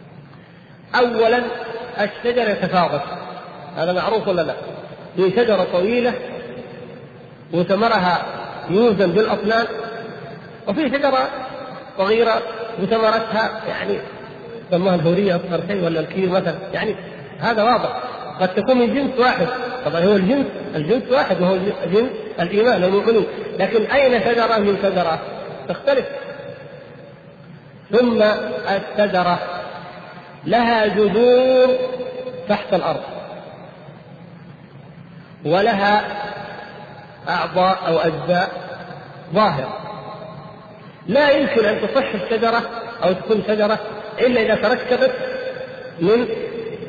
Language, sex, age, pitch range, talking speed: Arabic, male, 50-69, 175-230 Hz, 90 wpm